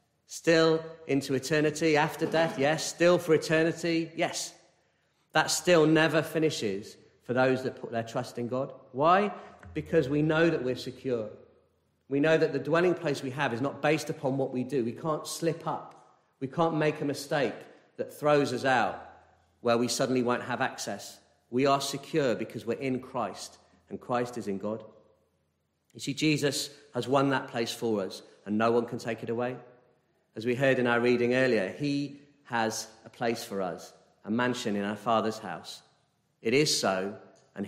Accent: British